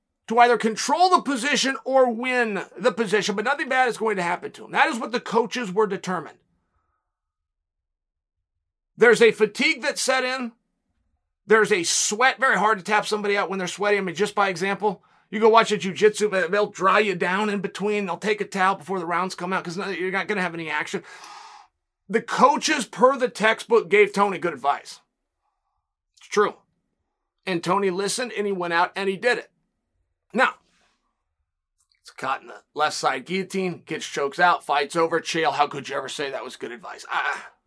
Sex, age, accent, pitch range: male, 40-59, American, 185-235 Hz